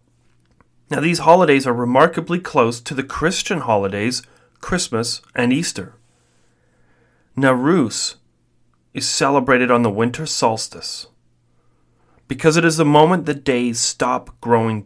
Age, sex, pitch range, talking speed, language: 30-49, male, 110-145 Hz, 115 wpm, English